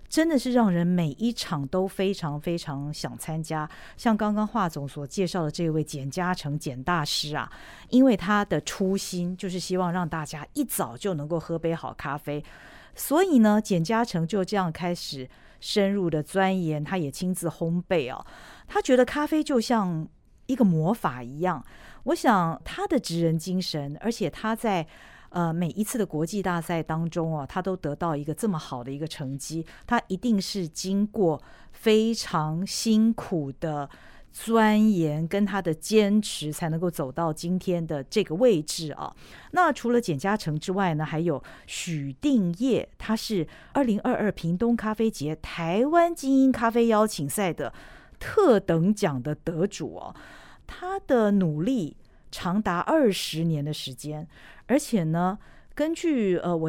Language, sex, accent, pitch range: Chinese, female, native, 160-220 Hz